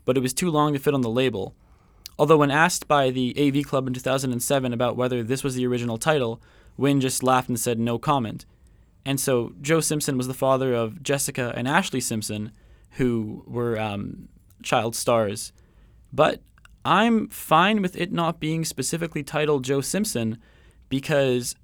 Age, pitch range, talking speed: 20-39, 115-145 Hz, 170 wpm